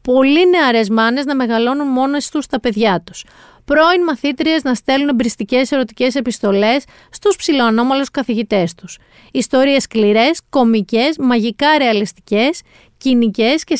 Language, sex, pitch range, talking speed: Greek, female, 210-285 Hz, 120 wpm